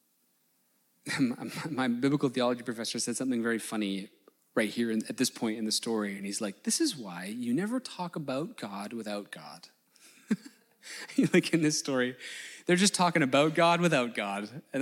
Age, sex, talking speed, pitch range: 20-39, male, 165 wpm, 115-160 Hz